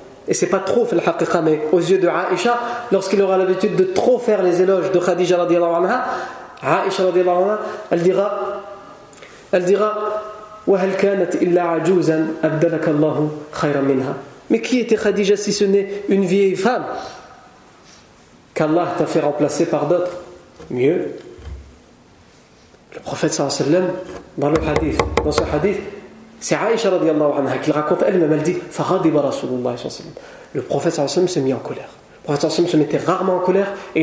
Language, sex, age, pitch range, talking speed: French, male, 40-59, 160-200 Hz, 130 wpm